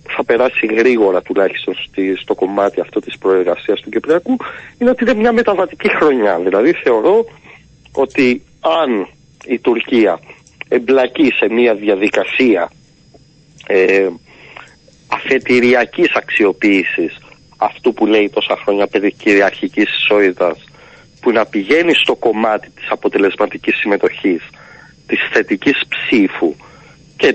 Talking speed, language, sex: 110 wpm, Greek, male